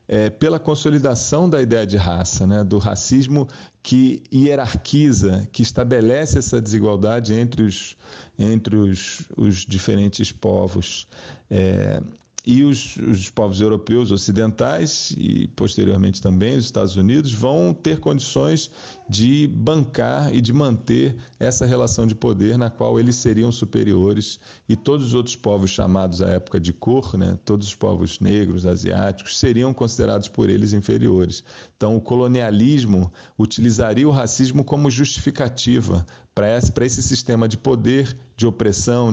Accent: Brazilian